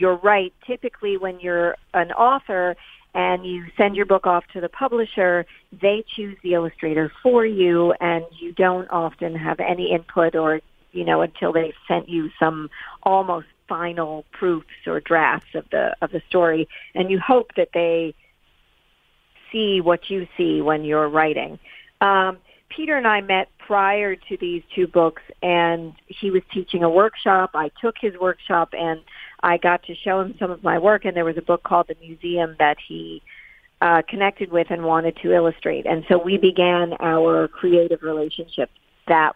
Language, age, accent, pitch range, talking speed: English, 50-69, American, 165-195 Hz, 175 wpm